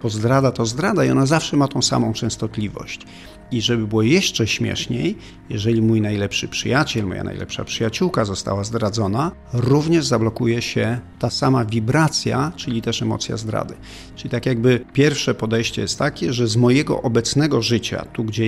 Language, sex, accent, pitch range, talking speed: Polish, male, native, 110-130 Hz, 160 wpm